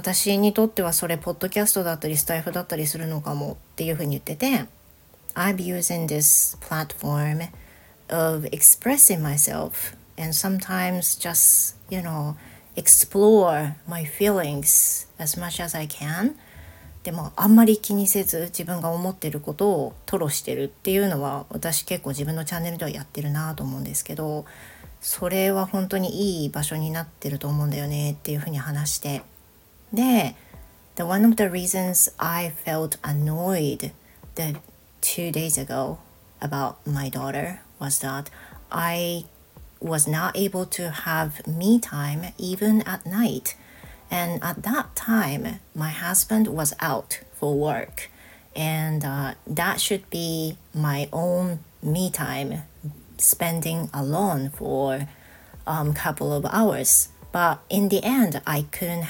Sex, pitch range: female, 145-185 Hz